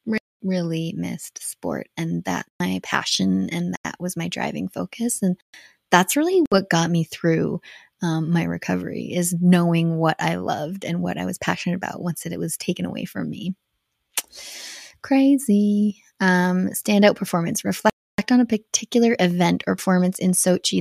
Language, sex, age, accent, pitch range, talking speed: English, female, 20-39, American, 175-205 Hz, 160 wpm